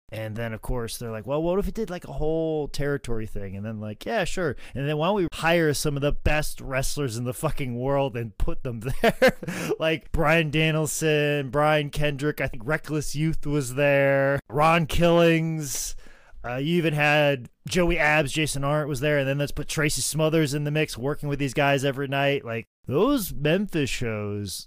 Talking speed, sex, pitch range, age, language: 200 wpm, male, 110-145 Hz, 30-49, English